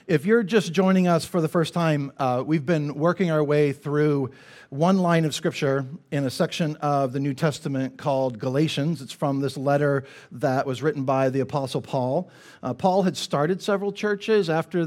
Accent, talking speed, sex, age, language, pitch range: American, 190 wpm, male, 50-69, English, 145-180 Hz